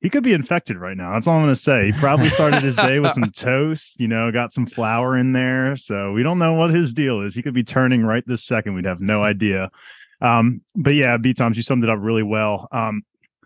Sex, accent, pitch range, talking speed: male, American, 105-130 Hz, 255 wpm